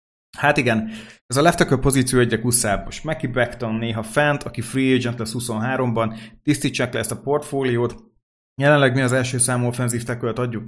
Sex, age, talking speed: male, 30-49, 165 wpm